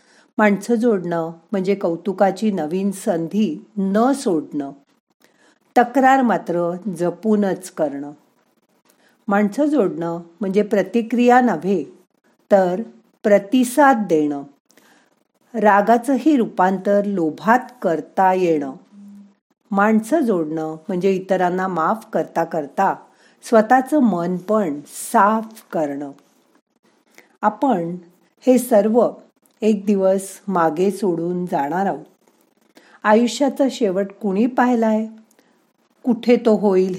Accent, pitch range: native, 175-235 Hz